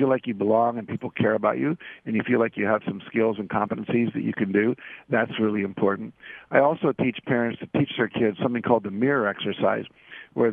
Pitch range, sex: 105-125 Hz, male